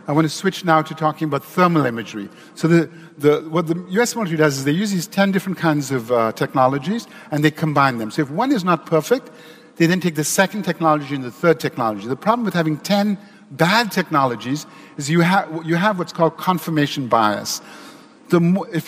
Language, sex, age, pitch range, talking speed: German, male, 50-69, 150-195 Hz, 195 wpm